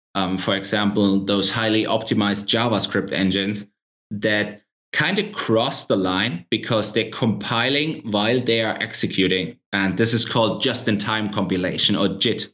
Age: 20-39